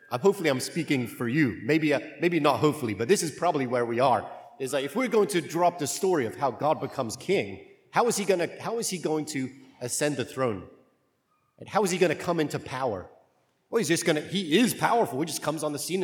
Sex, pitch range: male, 130-175 Hz